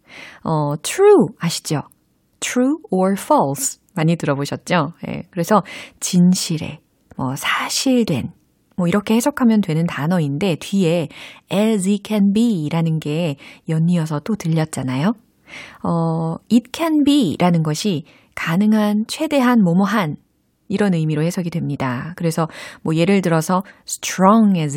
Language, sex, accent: Korean, female, native